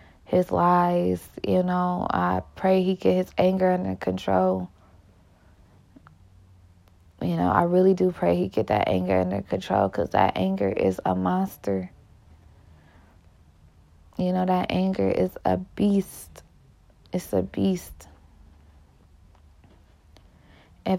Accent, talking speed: American, 115 wpm